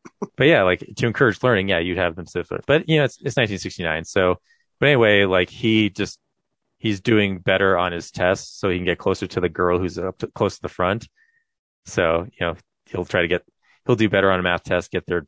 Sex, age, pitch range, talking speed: male, 30-49, 85-105 Hz, 235 wpm